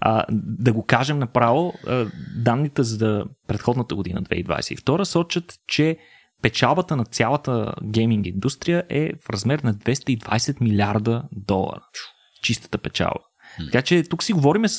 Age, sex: 30-49, male